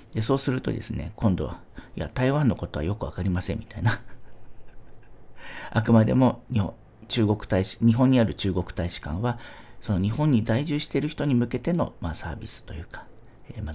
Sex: male